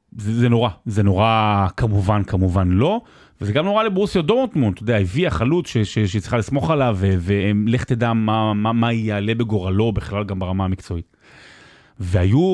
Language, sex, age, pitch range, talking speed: Hebrew, male, 30-49, 110-155 Hz, 160 wpm